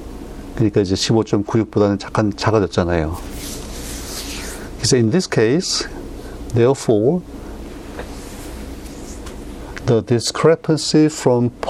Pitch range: 95-120 Hz